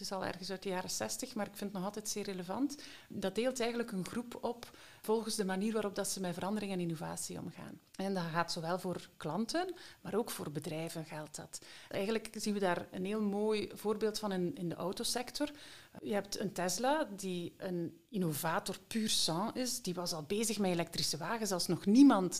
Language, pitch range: Dutch, 175-235 Hz